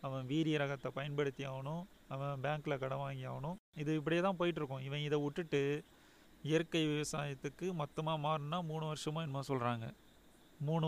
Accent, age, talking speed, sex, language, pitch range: native, 30-49, 145 wpm, male, Tamil, 135-155 Hz